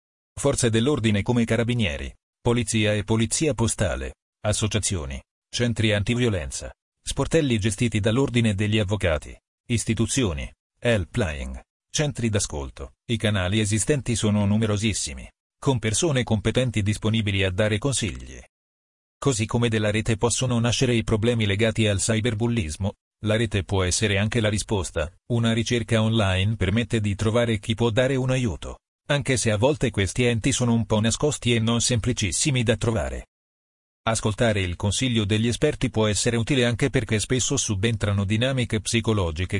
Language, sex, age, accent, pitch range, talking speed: Italian, male, 40-59, native, 105-120 Hz, 135 wpm